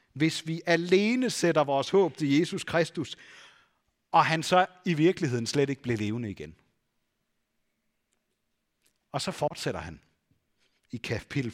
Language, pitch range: Danish, 130-185 Hz